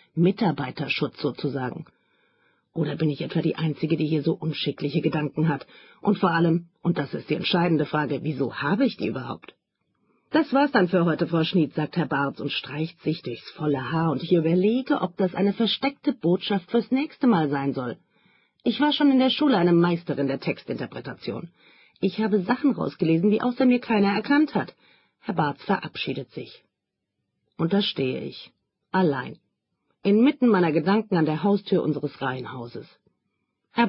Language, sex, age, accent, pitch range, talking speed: German, female, 40-59, German, 155-225 Hz, 170 wpm